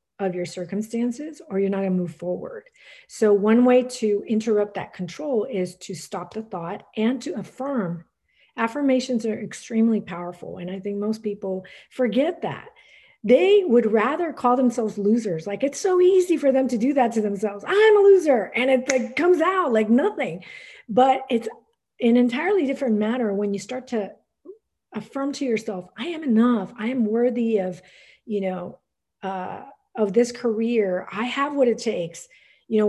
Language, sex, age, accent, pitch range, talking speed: English, female, 40-59, American, 200-255 Hz, 175 wpm